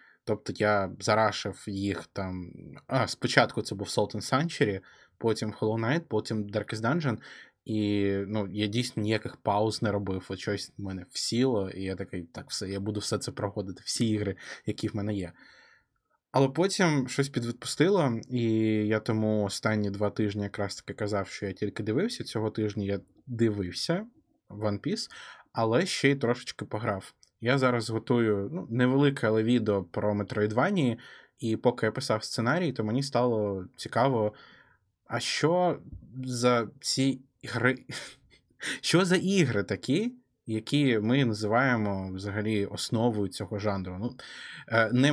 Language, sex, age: Ukrainian, male, 20-39